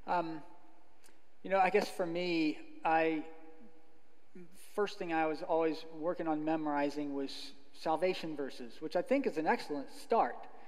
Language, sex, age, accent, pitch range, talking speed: English, male, 40-59, American, 160-210 Hz, 145 wpm